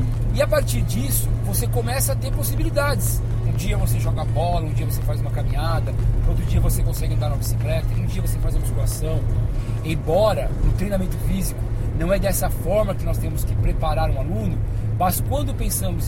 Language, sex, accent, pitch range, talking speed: Portuguese, male, Brazilian, 110-115 Hz, 190 wpm